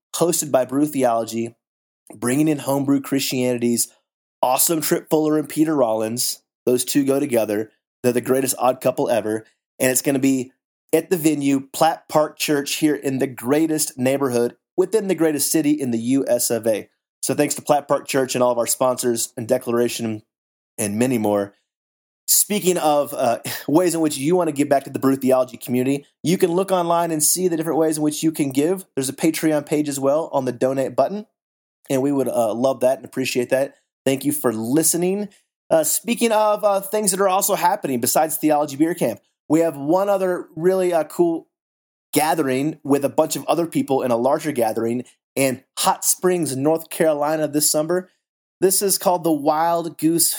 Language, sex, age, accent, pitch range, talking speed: English, male, 30-49, American, 130-165 Hz, 195 wpm